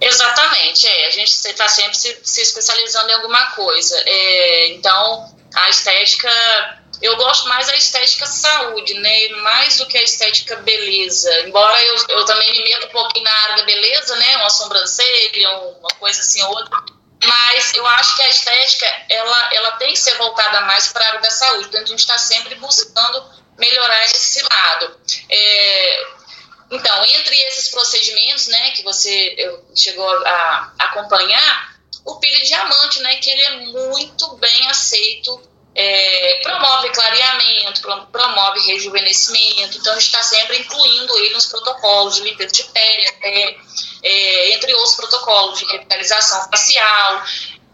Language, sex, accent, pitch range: Portuguese, female, Brazilian, 210-260 Hz